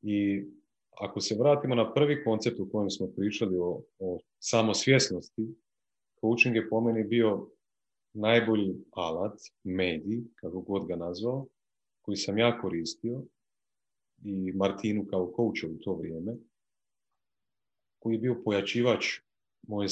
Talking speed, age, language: 125 wpm, 30-49, Croatian